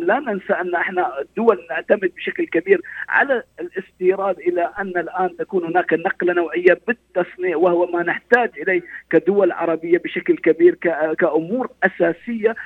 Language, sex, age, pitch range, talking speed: Arabic, male, 50-69, 165-240 Hz, 135 wpm